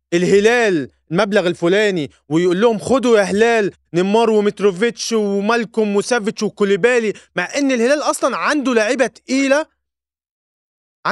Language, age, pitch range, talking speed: Arabic, 20-39, 170-225 Hz, 110 wpm